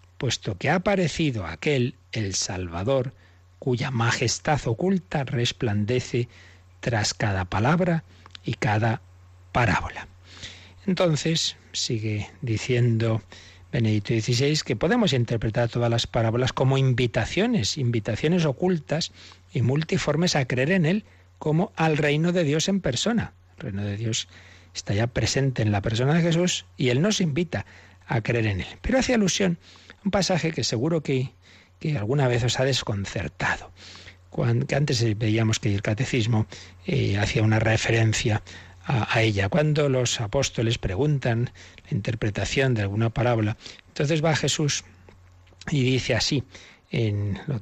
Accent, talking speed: Spanish, 135 wpm